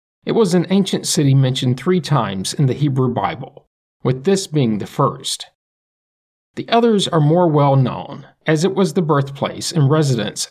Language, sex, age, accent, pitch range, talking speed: English, male, 50-69, American, 130-175 Hz, 170 wpm